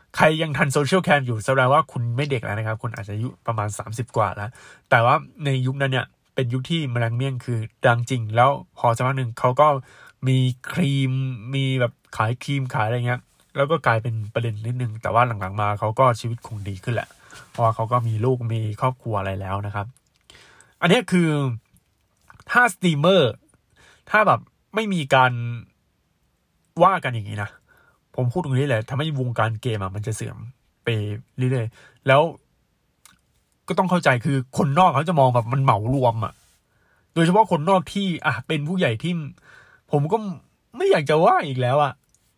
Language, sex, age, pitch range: Thai, male, 20-39, 115-145 Hz